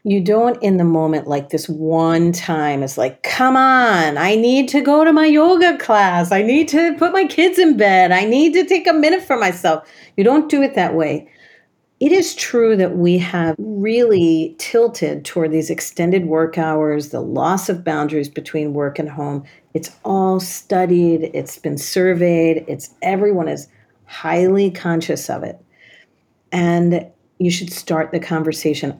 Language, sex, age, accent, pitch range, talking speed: English, female, 50-69, American, 160-210 Hz, 170 wpm